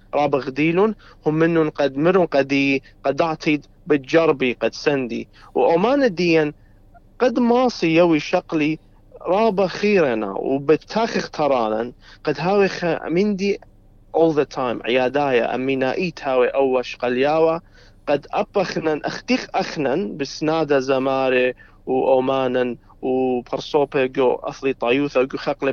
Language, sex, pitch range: English, male, 130-180 Hz